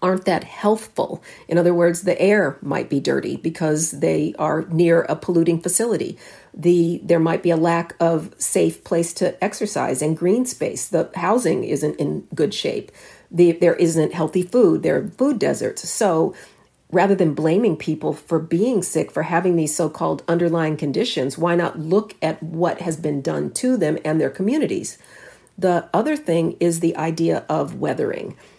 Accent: American